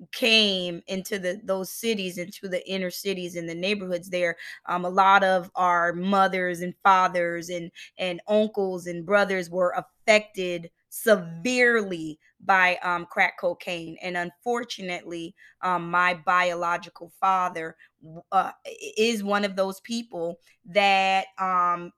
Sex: female